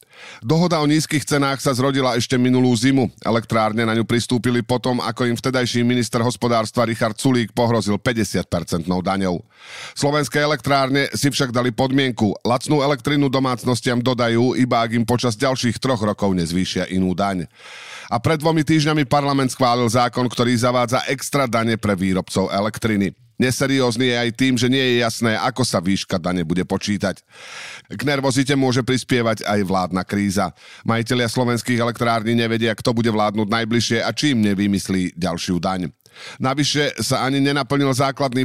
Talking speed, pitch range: 150 wpm, 105-130 Hz